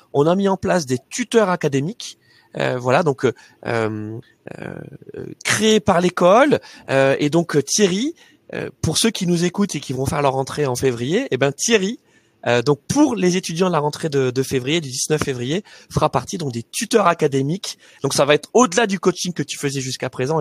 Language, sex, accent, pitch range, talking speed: French, male, French, 125-165 Hz, 205 wpm